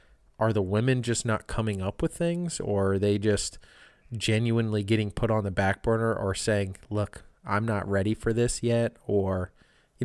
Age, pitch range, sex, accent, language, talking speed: 20-39, 100-120 Hz, male, American, English, 185 wpm